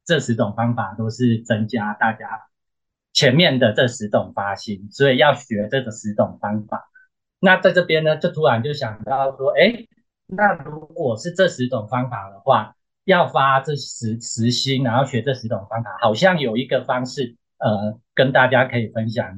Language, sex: Chinese, male